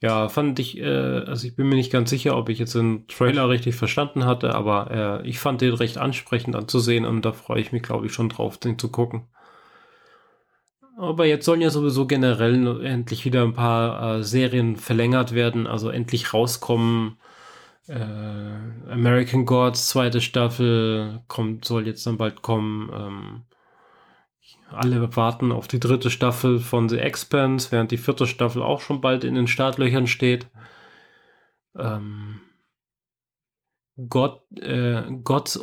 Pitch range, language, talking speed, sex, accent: 115-135 Hz, German, 155 wpm, male, German